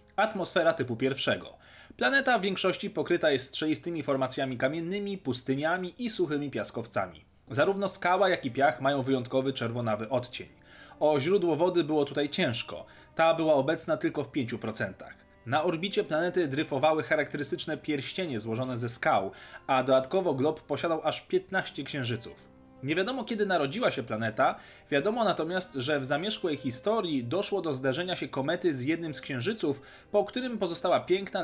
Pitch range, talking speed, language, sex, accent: 130-180 Hz, 145 wpm, Polish, male, native